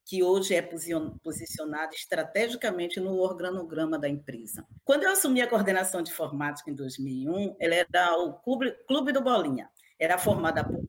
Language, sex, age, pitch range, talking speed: Portuguese, female, 40-59, 165-255 Hz, 150 wpm